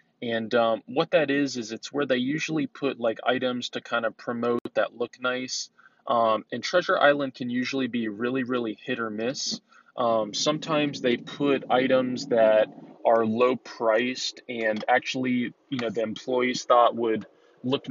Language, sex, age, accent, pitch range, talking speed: English, male, 20-39, American, 115-135 Hz, 170 wpm